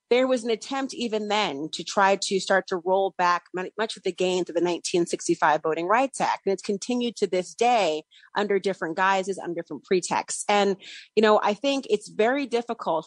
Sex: female